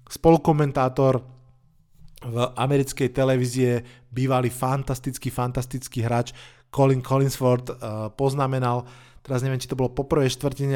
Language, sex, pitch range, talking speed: Slovak, male, 120-135 Hz, 105 wpm